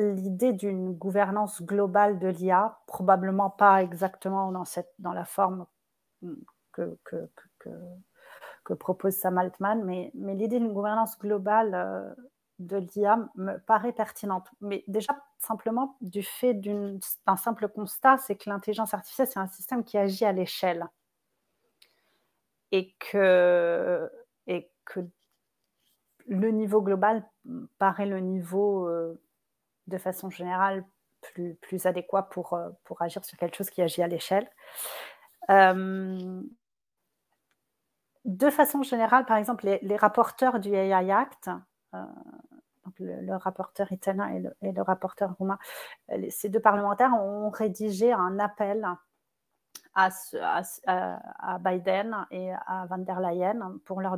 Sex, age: female, 40-59